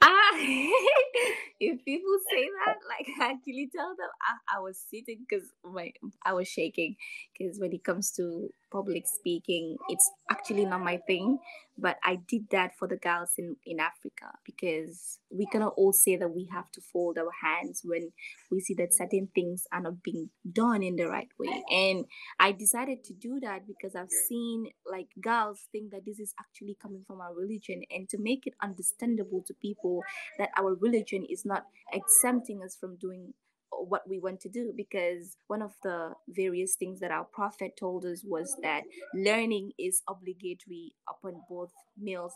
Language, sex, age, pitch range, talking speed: English, female, 20-39, 180-245 Hz, 180 wpm